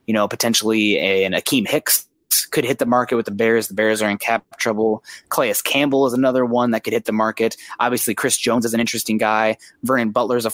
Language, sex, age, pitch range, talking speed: English, male, 20-39, 105-120 Hz, 230 wpm